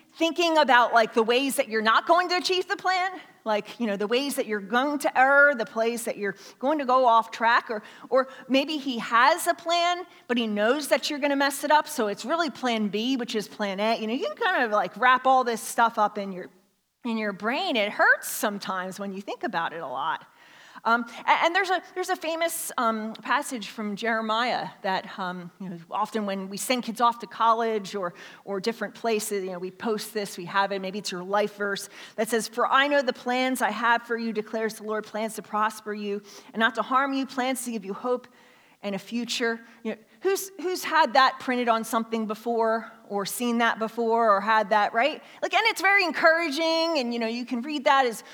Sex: female